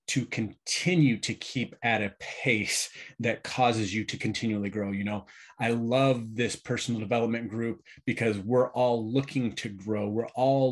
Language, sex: English, male